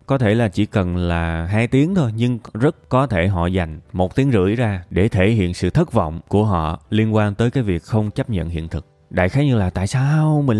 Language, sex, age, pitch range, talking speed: Vietnamese, male, 20-39, 95-130 Hz, 250 wpm